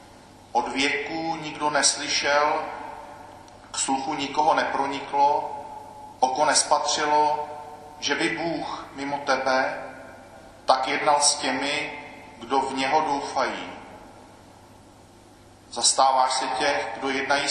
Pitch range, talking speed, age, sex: 130-150 Hz, 95 wpm, 40-59, male